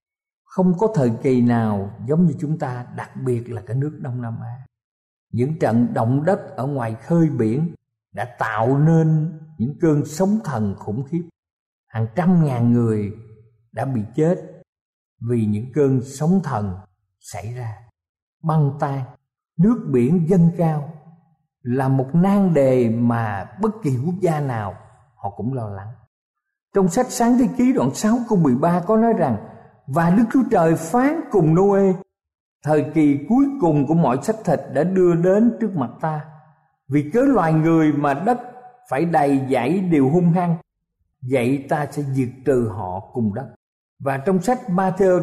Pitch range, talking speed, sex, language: 120-180 Hz, 165 wpm, male, Vietnamese